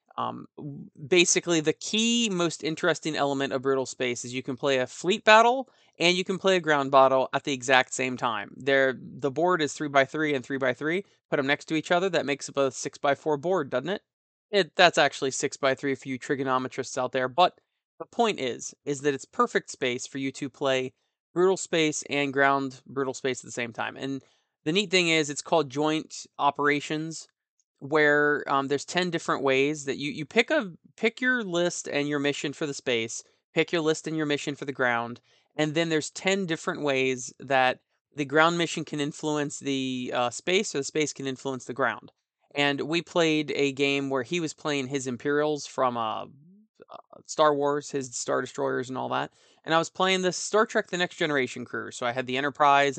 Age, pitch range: 20-39, 135-165 Hz